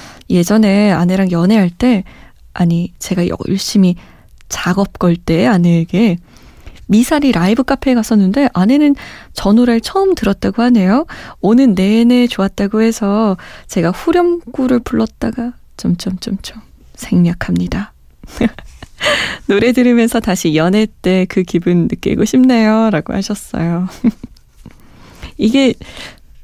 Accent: native